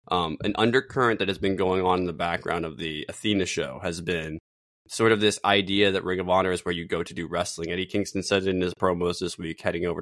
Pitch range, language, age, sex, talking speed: 90-100 Hz, English, 20-39, male, 250 wpm